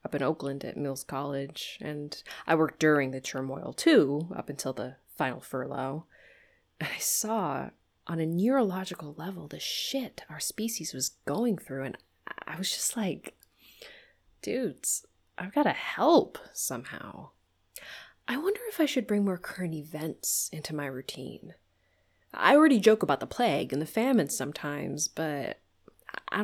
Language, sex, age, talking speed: English, female, 20-39, 150 wpm